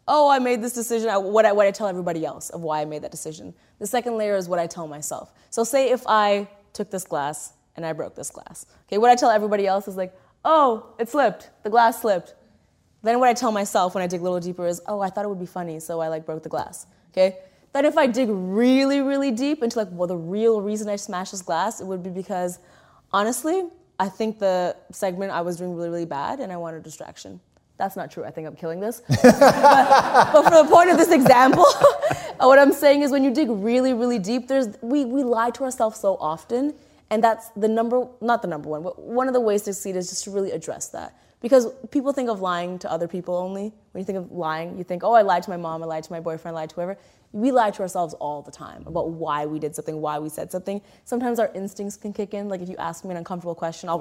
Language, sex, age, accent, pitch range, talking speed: English, female, 20-39, American, 170-235 Hz, 260 wpm